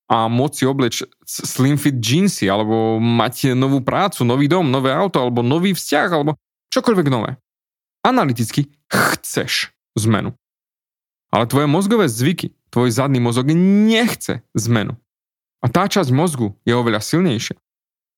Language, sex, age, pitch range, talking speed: Slovak, male, 20-39, 120-155 Hz, 130 wpm